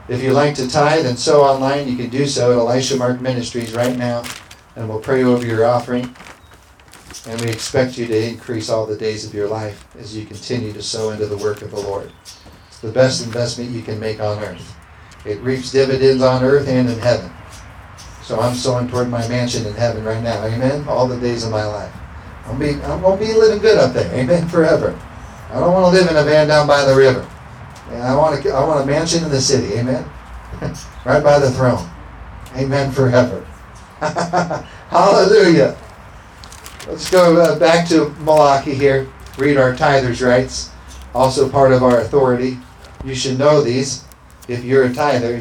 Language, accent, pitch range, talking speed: English, American, 110-140 Hz, 190 wpm